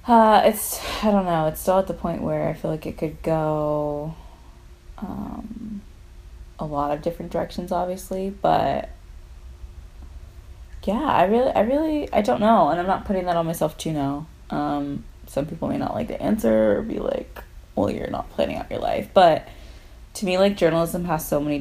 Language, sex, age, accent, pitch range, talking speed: English, female, 20-39, American, 135-175 Hz, 190 wpm